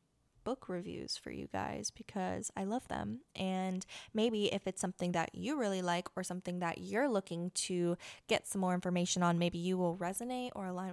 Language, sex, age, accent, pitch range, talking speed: English, female, 10-29, American, 180-210 Hz, 190 wpm